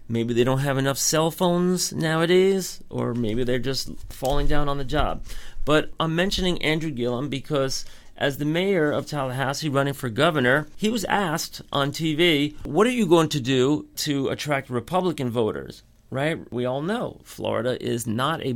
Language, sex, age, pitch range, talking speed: English, male, 40-59, 125-170 Hz, 175 wpm